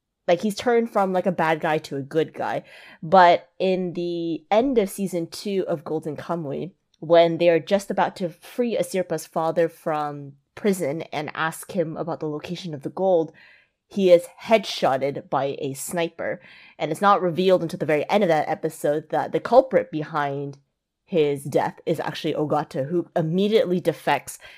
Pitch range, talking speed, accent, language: 150-180 Hz, 175 wpm, American, English